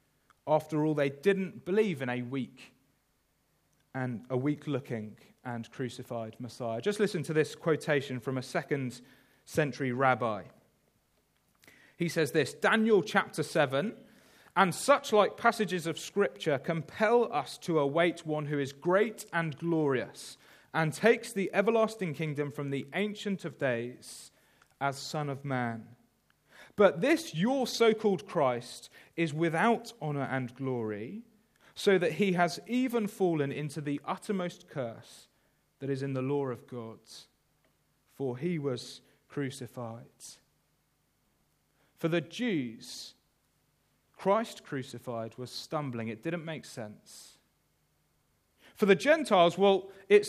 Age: 30-49